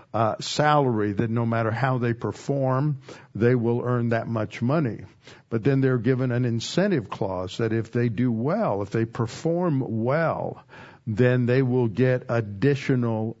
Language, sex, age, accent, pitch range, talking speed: English, male, 60-79, American, 115-140 Hz, 155 wpm